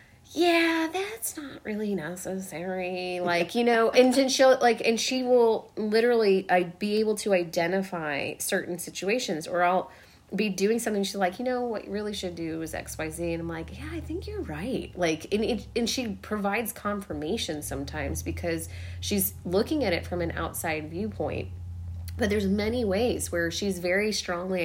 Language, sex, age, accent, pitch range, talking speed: English, female, 30-49, American, 160-215 Hz, 175 wpm